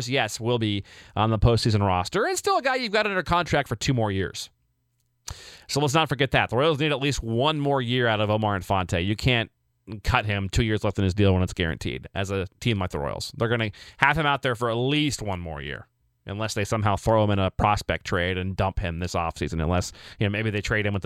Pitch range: 100-145 Hz